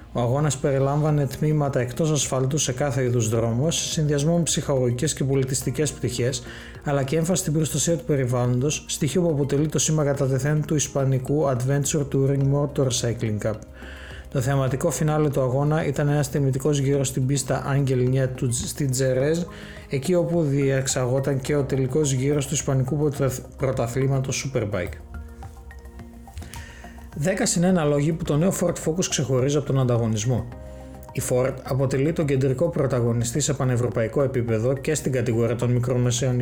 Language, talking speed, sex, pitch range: Greek, 145 wpm, male, 125-150 Hz